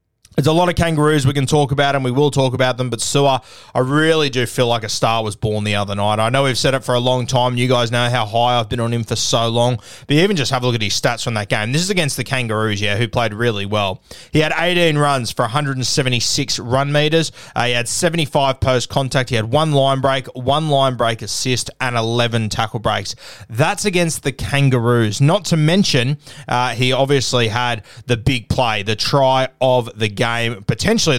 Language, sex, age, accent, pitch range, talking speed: English, male, 20-39, Australian, 115-145 Hz, 230 wpm